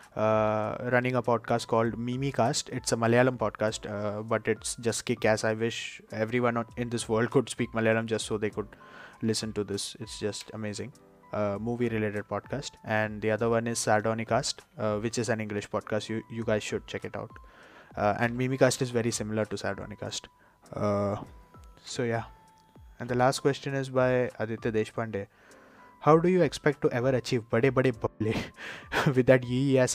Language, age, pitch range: Hindi, 20-39, 110-125 Hz